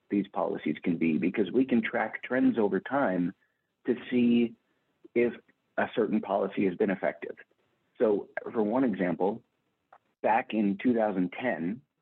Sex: male